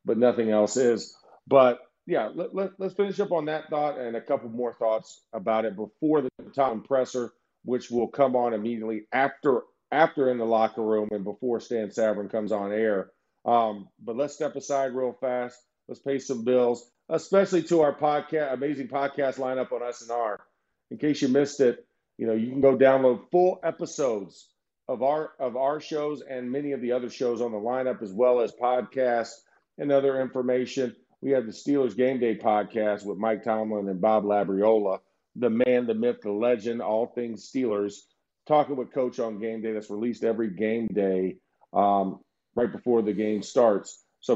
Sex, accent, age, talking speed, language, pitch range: male, American, 40-59, 185 wpm, English, 110-135 Hz